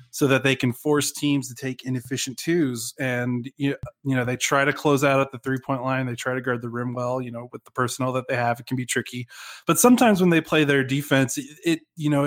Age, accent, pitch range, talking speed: 20-39, American, 125-145 Hz, 250 wpm